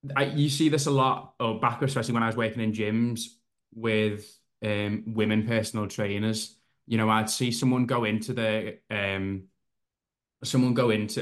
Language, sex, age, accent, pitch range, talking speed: English, male, 20-39, British, 110-135 Hz, 175 wpm